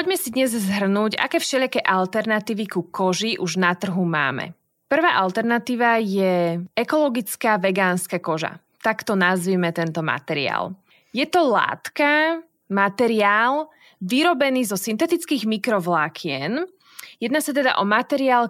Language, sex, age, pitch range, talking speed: Slovak, female, 20-39, 190-255 Hz, 115 wpm